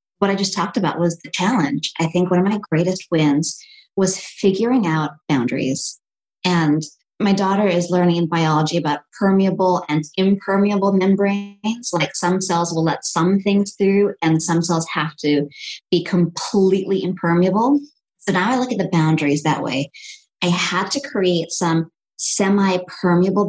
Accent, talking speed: American, 160 wpm